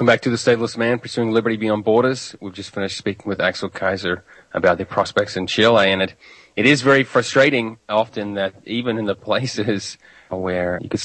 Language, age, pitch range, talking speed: English, 30-49, 95-115 Hz, 200 wpm